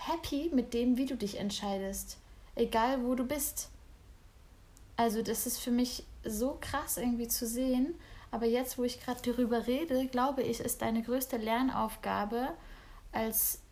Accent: German